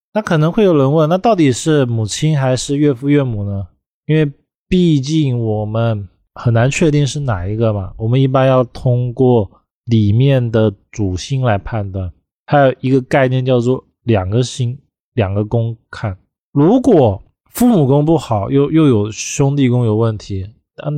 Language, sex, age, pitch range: Chinese, male, 20-39, 110-145 Hz